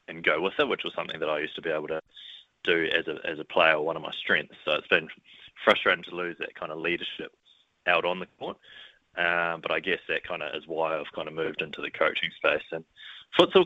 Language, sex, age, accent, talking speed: English, male, 20-39, Australian, 250 wpm